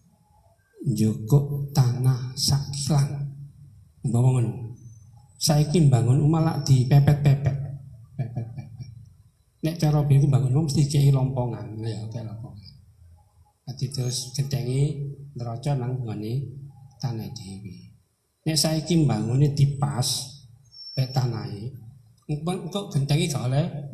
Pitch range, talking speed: 120-145 Hz, 110 wpm